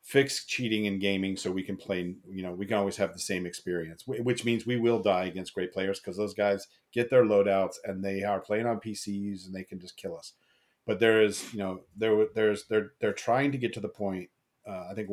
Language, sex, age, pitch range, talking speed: English, male, 40-59, 100-115 Hz, 240 wpm